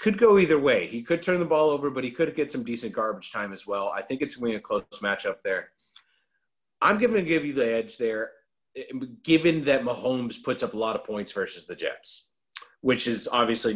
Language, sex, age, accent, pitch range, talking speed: English, male, 30-49, American, 110-155 Hz, 230 wpm